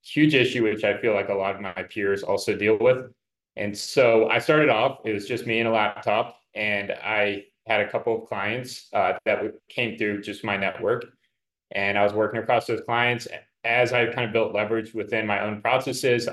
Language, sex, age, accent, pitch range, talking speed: English, male, 20-39, American, 105-120 Hz, 210 wpm